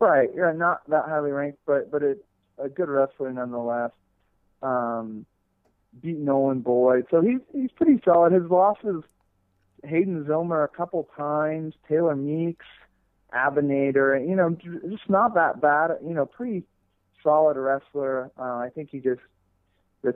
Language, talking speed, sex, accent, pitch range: English, 145 wpm, male, American, 125-170 Hz